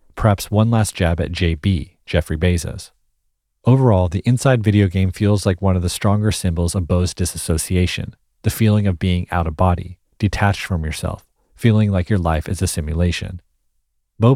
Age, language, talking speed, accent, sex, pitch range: 40-59, English, 170 wpm, American, male, 85-105 Hz